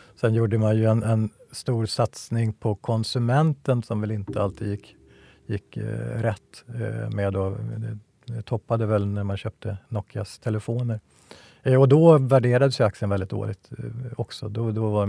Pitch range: 100-120 Hz